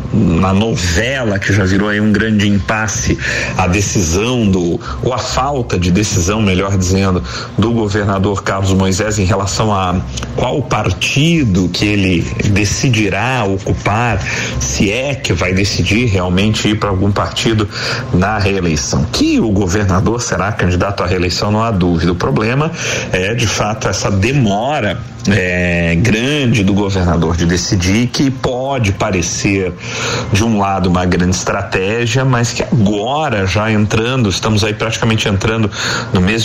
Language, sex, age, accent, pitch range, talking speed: Portuguese, male, 40-59, Brazilian, 95-115 Hz, 145 wpm